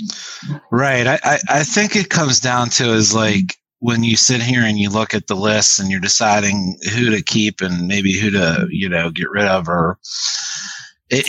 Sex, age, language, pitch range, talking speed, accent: male, 30-49, English, 110-165 Hz, 195 wpm, American